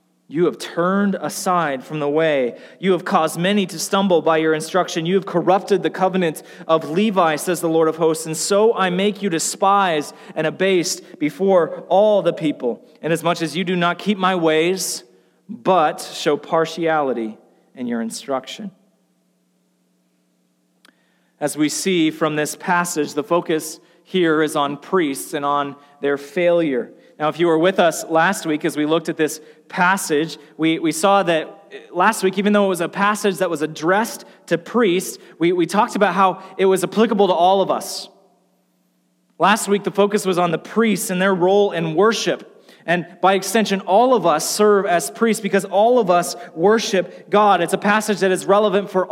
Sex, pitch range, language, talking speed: male, 155-195 Hz, English, 180 wpm